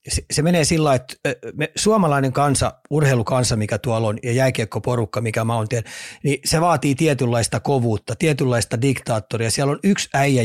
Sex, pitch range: male, 120-150 Hz